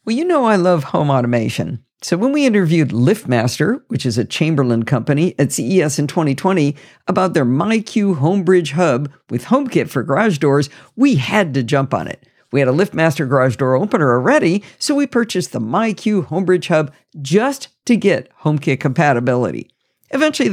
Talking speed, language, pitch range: 170 wpm, English, 135-190 Hz